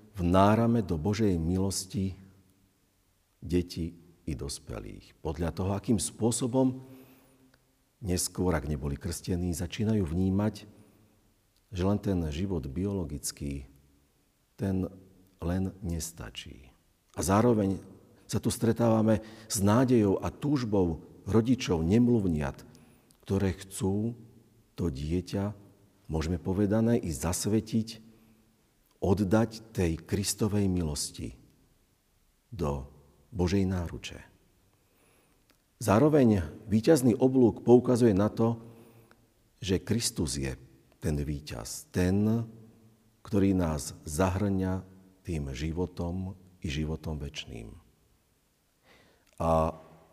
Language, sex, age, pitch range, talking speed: Slovak, male, 50-69, 85-110 Hz, 85 wpm